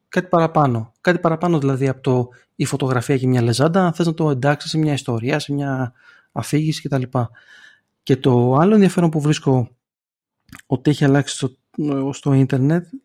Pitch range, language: 135-165 Hz, Greek